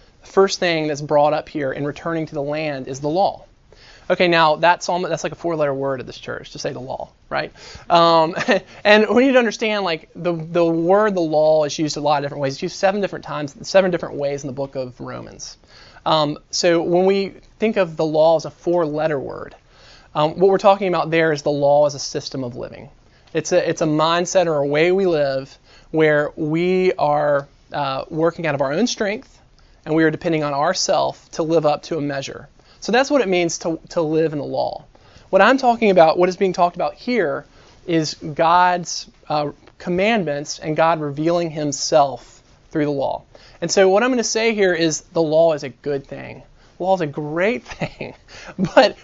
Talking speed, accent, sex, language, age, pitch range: 215 wpm, American, male, English, 20-39, 145-185 Hz